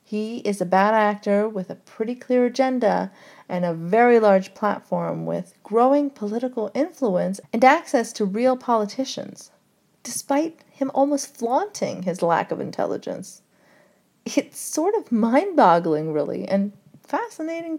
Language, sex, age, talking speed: English, female, 40-59, 130 wpm